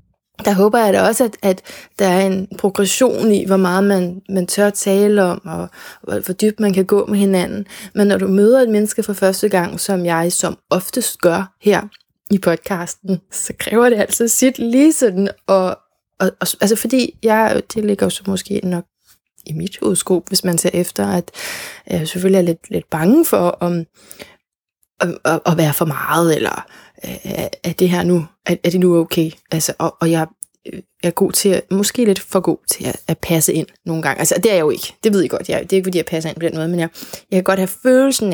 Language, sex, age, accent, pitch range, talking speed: Danish, female, 20-39, native, 175-210 Hz, 210 wpm